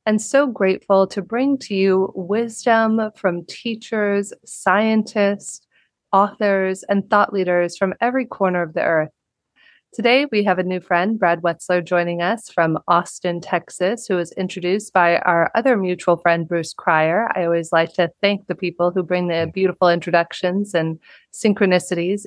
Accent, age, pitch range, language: American, 30-49, 175-215 Hz, English